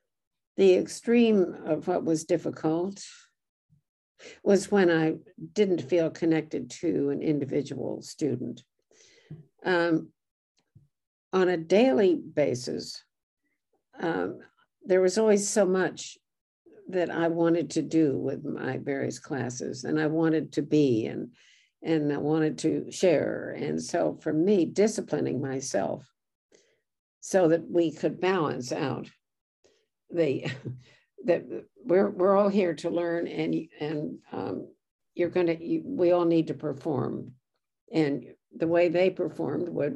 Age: 60-79